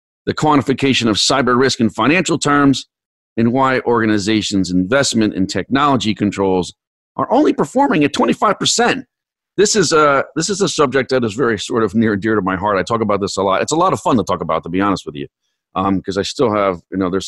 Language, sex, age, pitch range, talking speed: English, male, 40-59, 90-120 Hz, 225 wpm